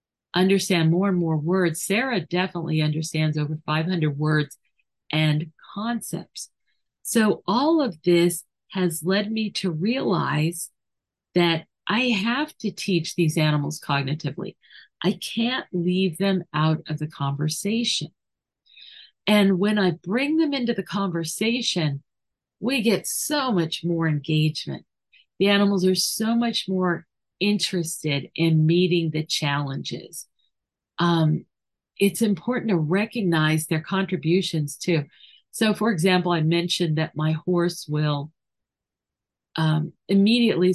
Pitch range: 160-200 Hz